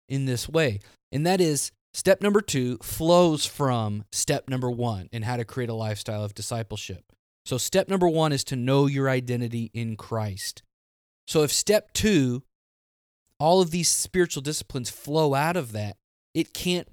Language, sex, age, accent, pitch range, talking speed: English, male, 20-39, American, 105-145 Hz, 170 wpm